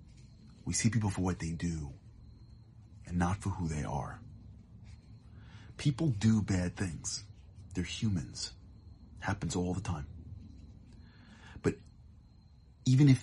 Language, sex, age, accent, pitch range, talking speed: English, male, 40-59, American, 85-110 Hz, 120 wpm